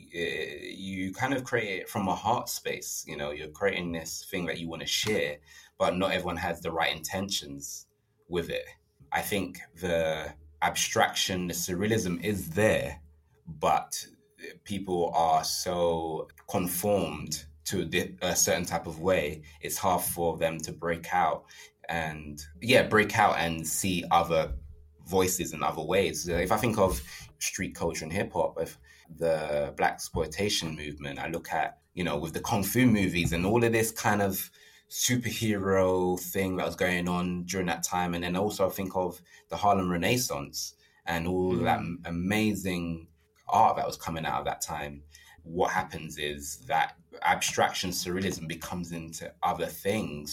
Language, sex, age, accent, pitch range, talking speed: English, male, 20-39, British, 80-95 Hz, 160 wpm